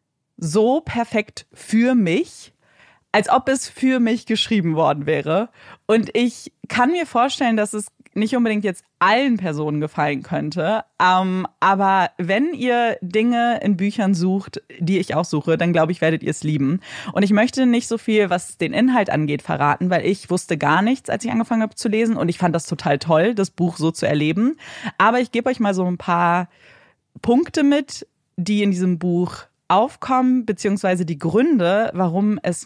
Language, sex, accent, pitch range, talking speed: German, female, German, 165-215 Hz, 180 wpm